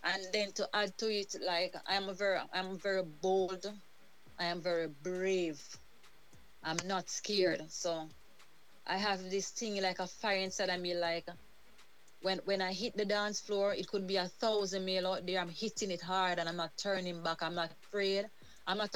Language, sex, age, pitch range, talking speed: English, female, 30-49, 170-200 Hz, 195 wpm